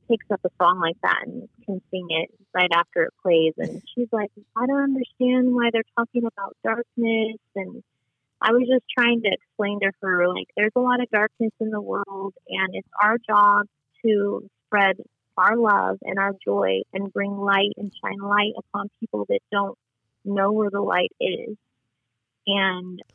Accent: American